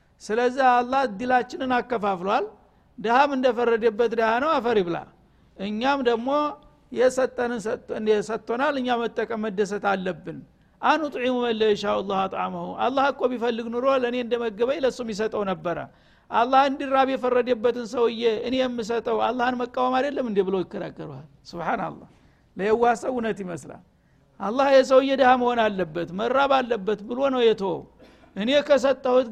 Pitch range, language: 210-255 Hz, Amharic